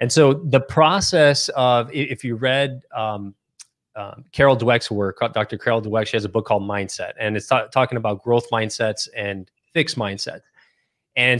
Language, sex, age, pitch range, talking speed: English, male, 30-49, 110-125 Hz, 175 wpm